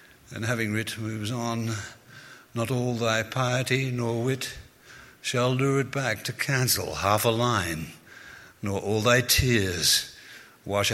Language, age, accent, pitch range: English, 60-79, British, 105-130 Hz